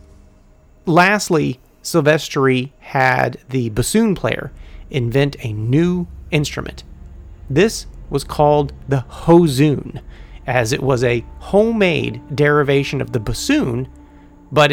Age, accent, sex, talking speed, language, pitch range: 30-49, American, male, 100 wpm, English, 115-150 Hz